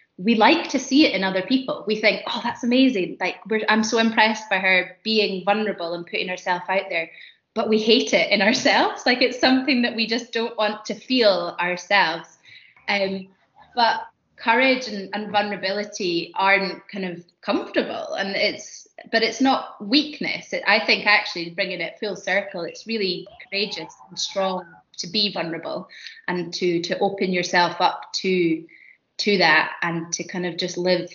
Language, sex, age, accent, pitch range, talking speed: English, female, 20-39, British, 180-220 Hz, 175 wpm